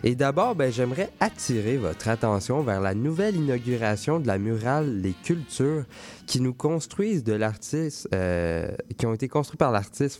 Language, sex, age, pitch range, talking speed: French, male, 20-39, 105-140 Hz, 165 wpm